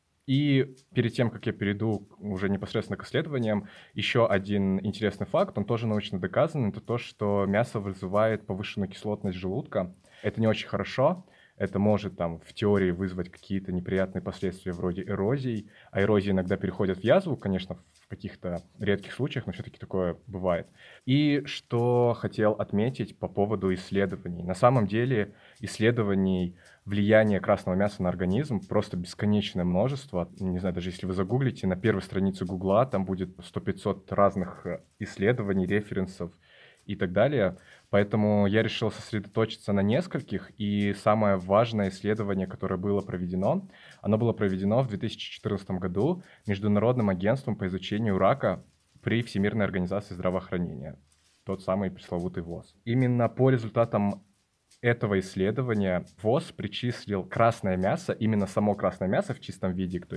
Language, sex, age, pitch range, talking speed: Russian, male, 20-39, 95-110 Hz, 145 wpm